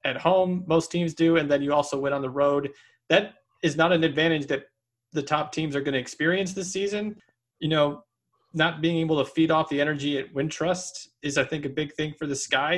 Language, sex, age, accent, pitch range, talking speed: English, male, 20-39, American, 130-165 Hz, 235 wpm